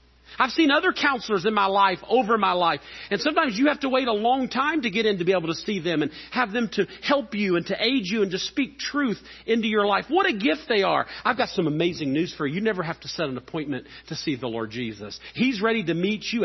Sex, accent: male, American